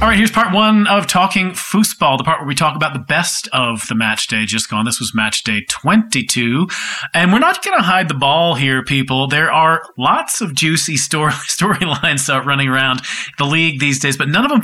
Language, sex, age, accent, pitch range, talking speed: English, male, 40-59, American, 130-175 Hz, 220 wpm